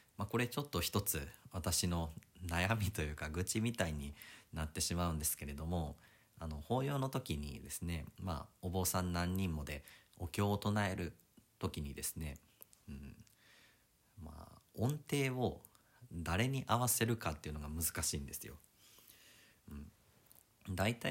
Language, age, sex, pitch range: Japanese, 40-59, male, 80-110 Hz